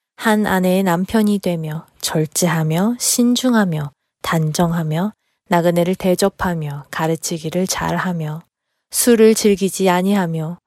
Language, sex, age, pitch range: Korean, female, 20-39, 170-200 Hz